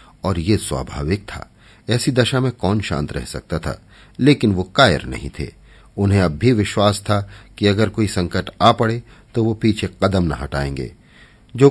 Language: Hindi